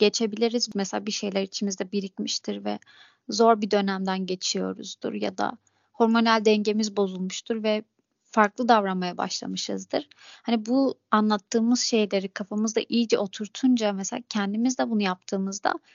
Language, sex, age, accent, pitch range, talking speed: Turkish, female, 30-49, native, 200-240 Hz, 120 wpm